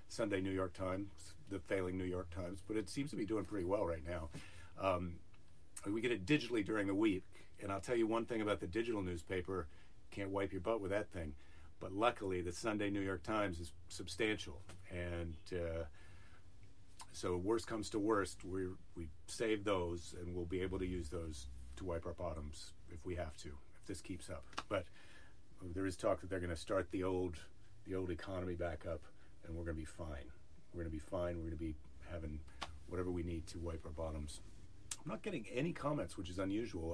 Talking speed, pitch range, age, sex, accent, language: 210 wpm, 85-100 Hz, 40-59, male, American, English